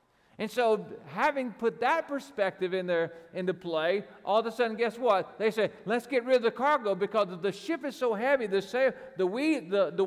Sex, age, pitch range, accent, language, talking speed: male, 50-69, 175-245 Hz, American, English, 215 wpm